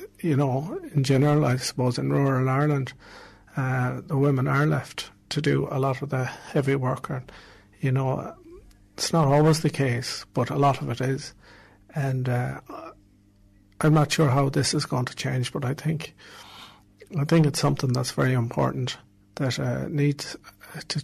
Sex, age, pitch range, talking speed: male, 50-69, 125-145 Hz, 175 wpm